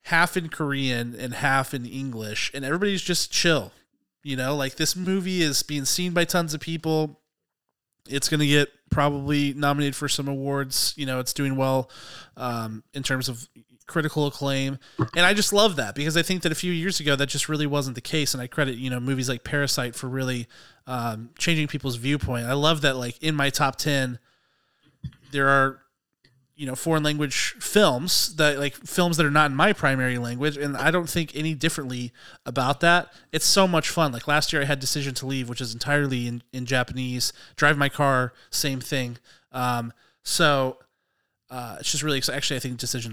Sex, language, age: male, English, 20-39